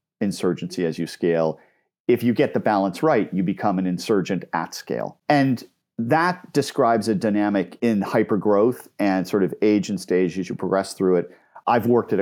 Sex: male